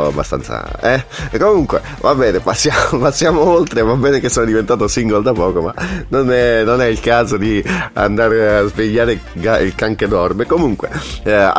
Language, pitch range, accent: Italian, 75-105 Hz, native